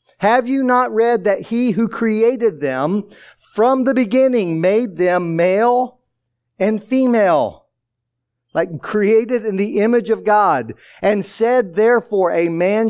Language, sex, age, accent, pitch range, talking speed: English, male, 50-69, American, 155-210 Hz, 135 wpm